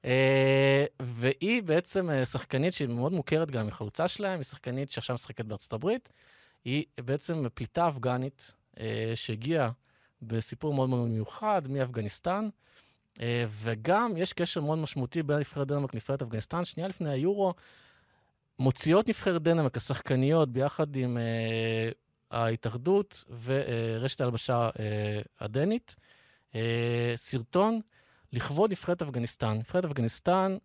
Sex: male